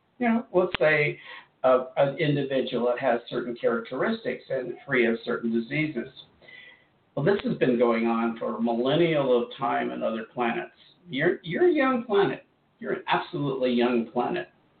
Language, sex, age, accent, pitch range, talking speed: English, male, 50-69, American, 120-150 Hz, 160 wpm